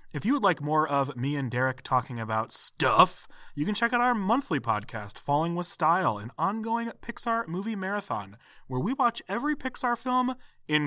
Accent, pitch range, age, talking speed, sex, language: American, 125-185 Hz, 30-49, 190 wpm, male, English